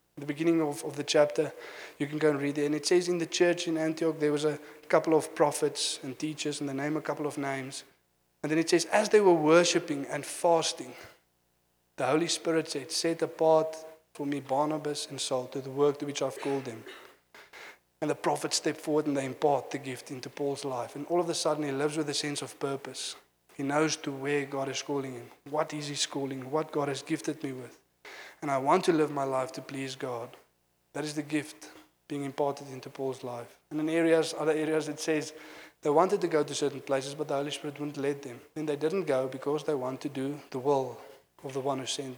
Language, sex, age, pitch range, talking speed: English, male, 20-39, 135-155 Hz, 230 wpm